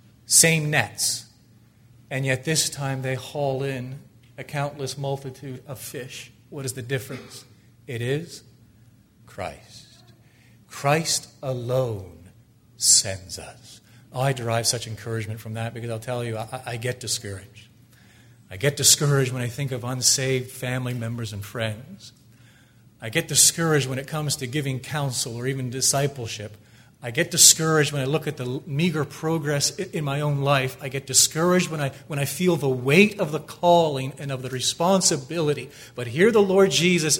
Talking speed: 160 wpm